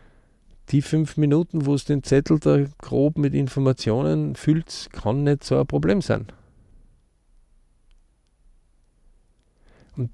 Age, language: 50-69, German